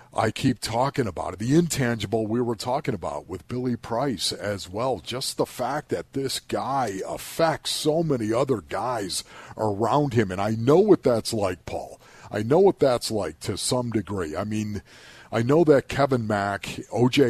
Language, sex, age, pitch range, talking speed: English, male, 50-69, 105-130 Hz, 180 wpm